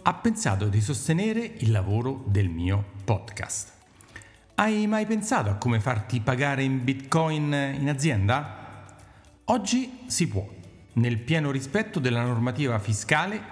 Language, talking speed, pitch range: Italian, 130 wpm, 105-150 Hz